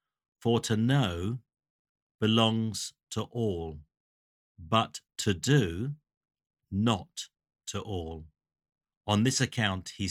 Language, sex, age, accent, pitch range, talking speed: English, male, 50-69, British, 95-120 Hz, 95 wpm